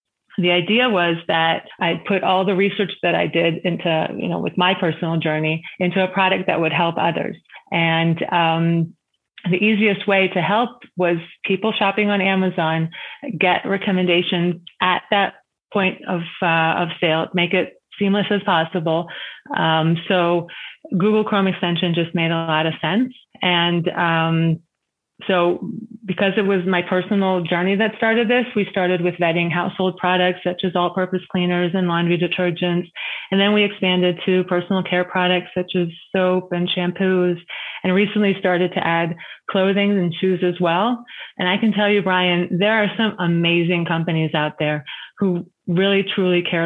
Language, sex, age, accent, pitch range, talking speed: English, female, 30-49, American, 170-195 Hz, 165 wpm